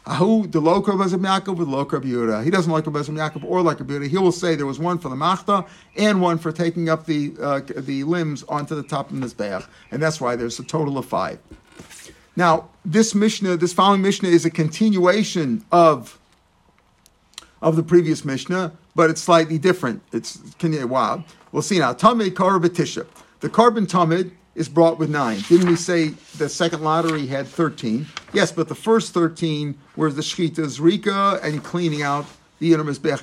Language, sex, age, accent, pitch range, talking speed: English, male, 50-69, American, 150-185 Hz, 175 wpm